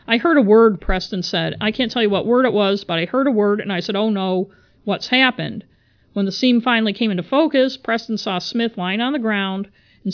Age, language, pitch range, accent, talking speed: 50-69, English, 190-245 Hz, American, 245 wpm